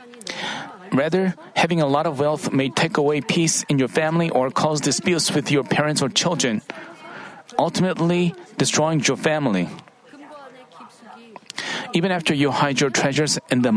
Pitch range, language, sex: 145-180 Hz, Korean, male